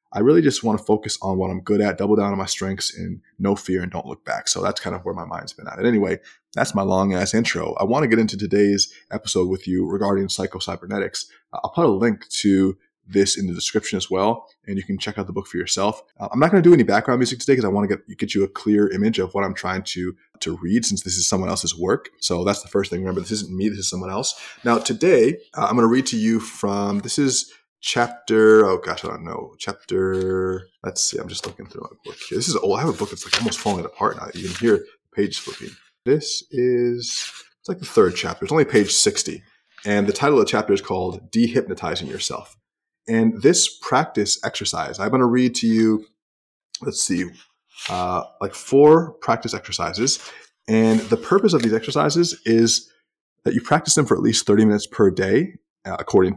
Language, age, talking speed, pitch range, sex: English, 20-39, 230 wpm, 95-115 Hz, male